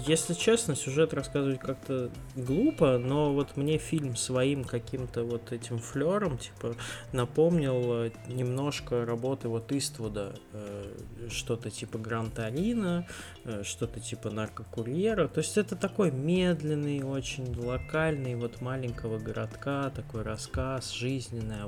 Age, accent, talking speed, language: 20-39, native, 110 wpm, Russian